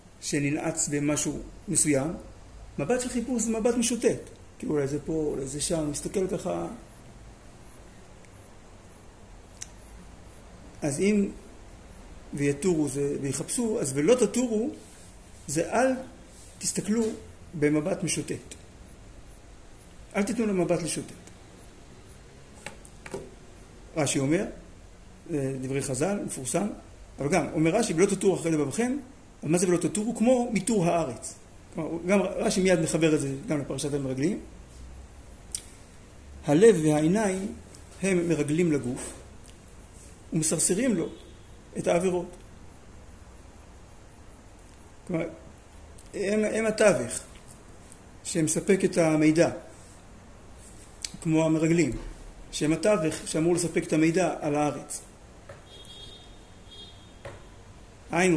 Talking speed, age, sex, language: 95 wpm, 50-69, male, Hebrew